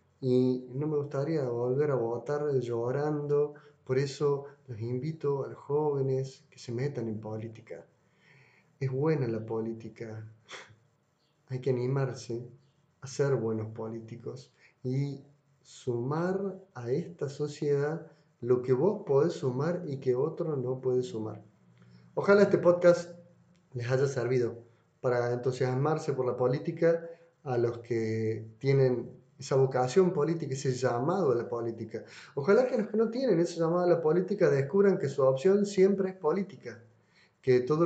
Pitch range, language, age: 120-155 Hz, Spanish, 30-49